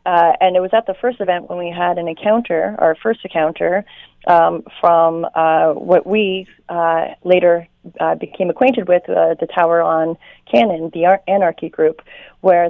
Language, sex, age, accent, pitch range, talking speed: English, female, 30-49, American, 165-195 Hz, 170 wpm